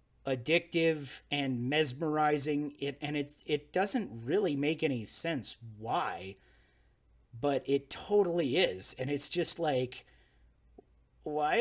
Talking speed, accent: 115 wpm, American